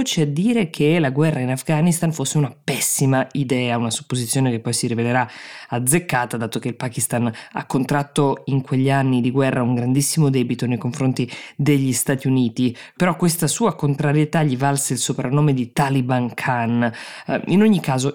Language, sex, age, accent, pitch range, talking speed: Italian, female, 20-39, native, 125-155 Hz, 170 wpm